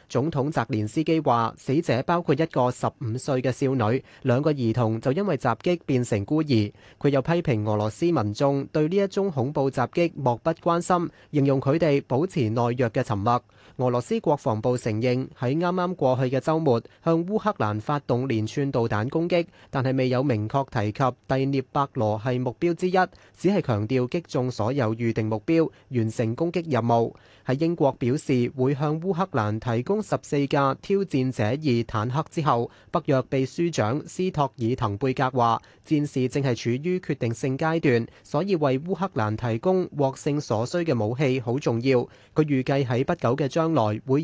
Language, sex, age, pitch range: Chinese, male, 20-39, 115-155 Hz